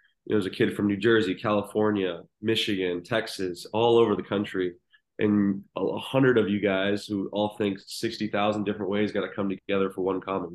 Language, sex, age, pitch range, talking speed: English, male, 20-39, 95-110 Hz, 195 wpm